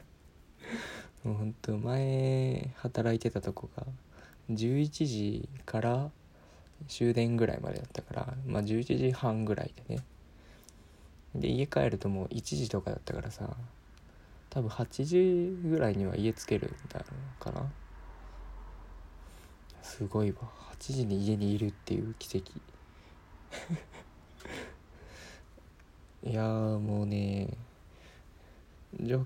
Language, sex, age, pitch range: Japanese, male, 20-39, 80-120 Hz